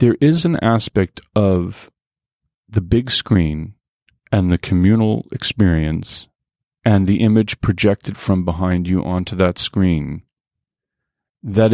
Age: 40-59